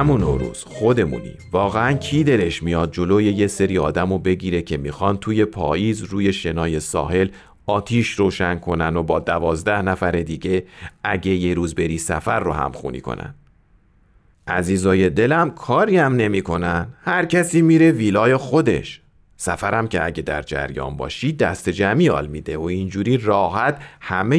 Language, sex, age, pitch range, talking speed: Persian, male, 40-59, 90-130 Hz, 145 wpm